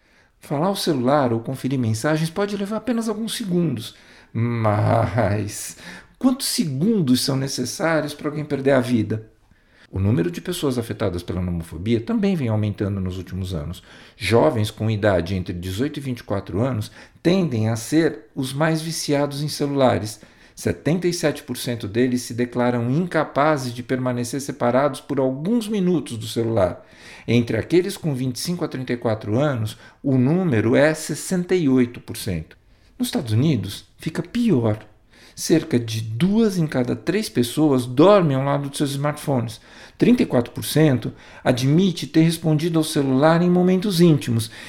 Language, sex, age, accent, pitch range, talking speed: Portuguese, male, 50-69, Brazilian, 115-160 Hz, 135 wpm